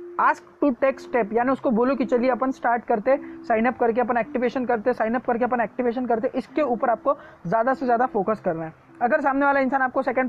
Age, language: 20-39, Hindi